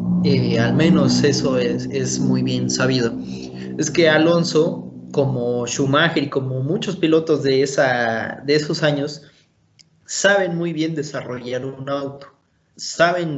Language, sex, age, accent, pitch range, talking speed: Spanish, male, 20-39, Mexican, 120-155 Hz, 135 wpm